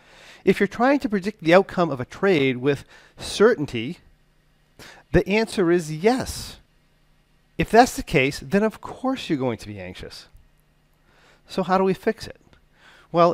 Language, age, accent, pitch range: English, 40-59, American, 130-190 Hz